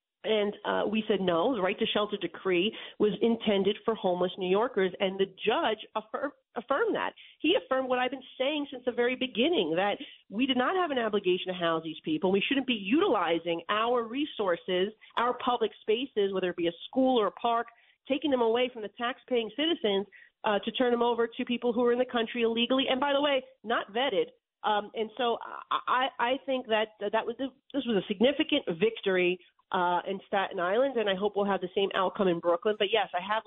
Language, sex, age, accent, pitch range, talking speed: English, female, 40-59, American, 190-250 Hz, 210 wpm